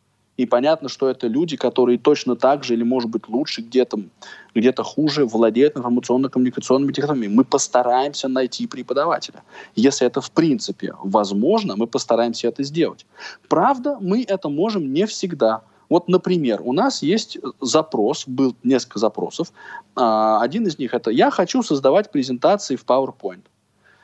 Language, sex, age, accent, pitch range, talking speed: Russian, male, 20-39, native, 115-175 Hz, 140 wpm